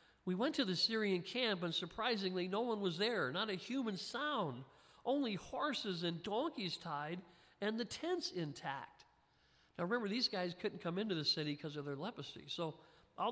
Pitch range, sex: 165-215 Hz, male